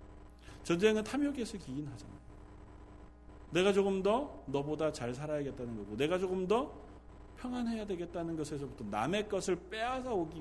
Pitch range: 140-220 Hz